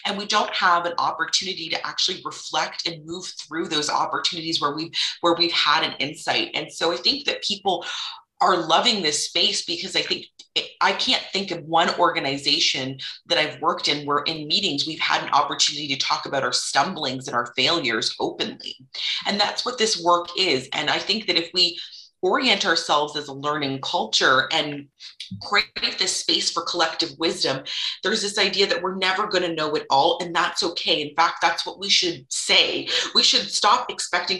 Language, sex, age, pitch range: English, female, 30-49, 150-190 Hz